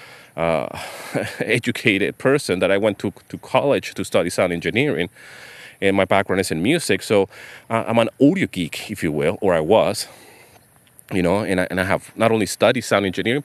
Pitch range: 95-125 Hz